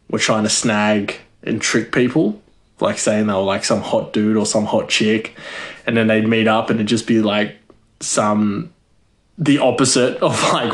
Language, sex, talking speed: English, male, 190 wpm